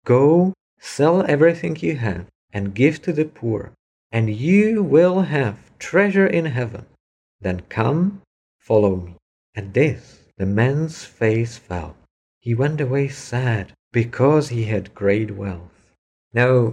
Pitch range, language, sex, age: 110-155 Hz, English, male, 50-69